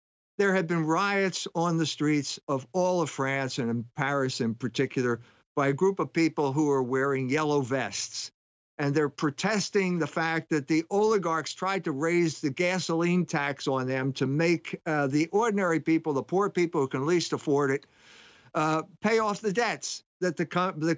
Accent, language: American, English